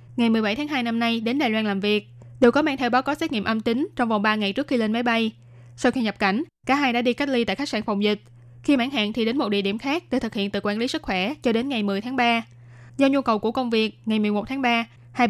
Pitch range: 205-250 Hz